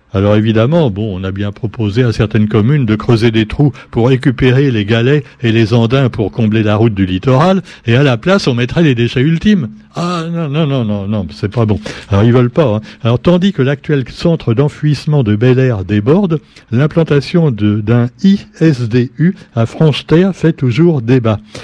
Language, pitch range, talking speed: French, 105-145 Hz, 190 wpm